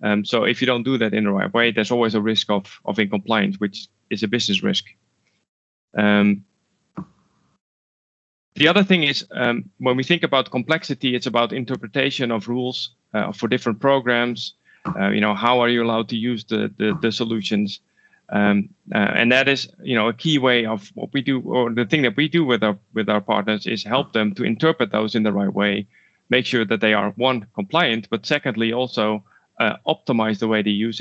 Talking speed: 205 wpm